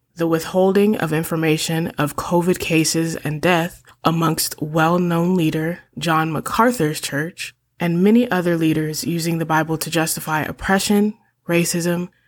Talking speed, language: 125 wpm, English